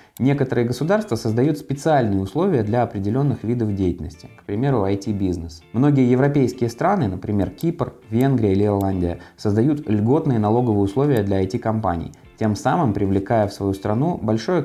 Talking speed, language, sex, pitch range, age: 135 wpm, Russian, male, 100-130 Hz, 20-39